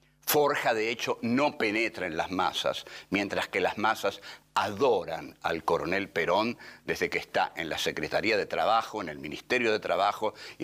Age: 60-79